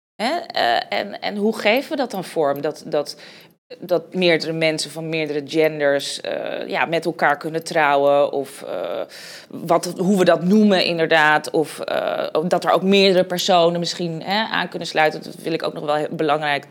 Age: 20-39